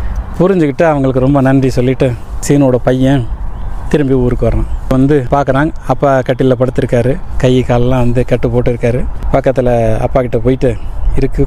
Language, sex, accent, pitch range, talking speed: Tamil, male, native, 125-145 Hz, 130 wpm